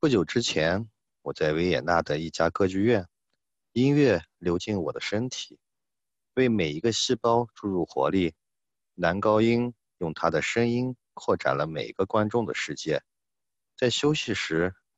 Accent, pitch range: native, 85-125 Hz